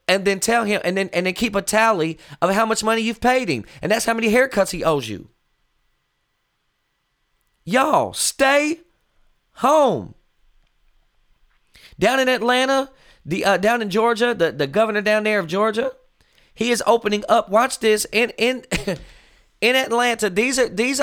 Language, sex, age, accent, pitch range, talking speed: English, male, 30-49, American, 180-250 Hz, 165 wpm